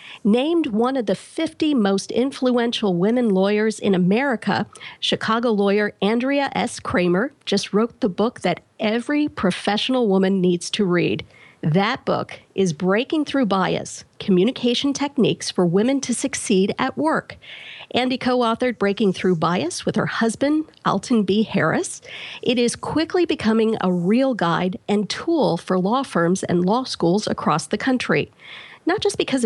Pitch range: 195-260 Hz